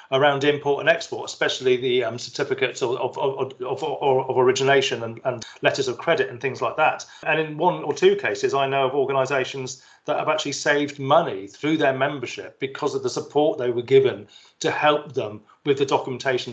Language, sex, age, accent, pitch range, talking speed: English, male, 40-59, British, 135-185 Hz, 185 wpm